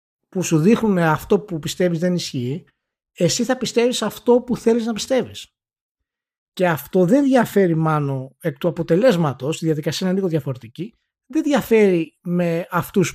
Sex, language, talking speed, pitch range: male, Greek, 155 wpm, 150-205 Hz